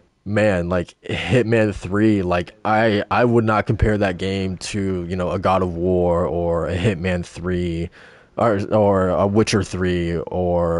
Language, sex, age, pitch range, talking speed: English, male, 20-39, 90-115 Hz, 160 wpm